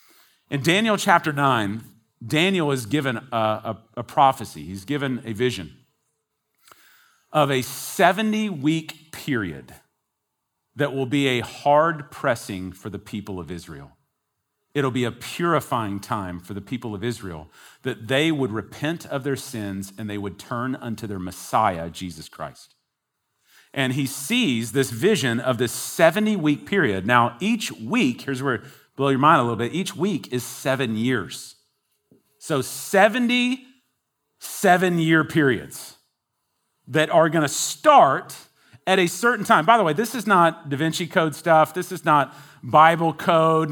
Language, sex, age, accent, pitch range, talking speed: English, male, 40-59, American, 120-180 Hz, 145 wpm